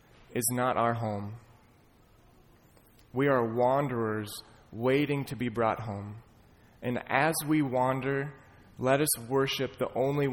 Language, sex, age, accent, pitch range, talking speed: English, male, 20-39, American, 105-130 Hz, 120 wpm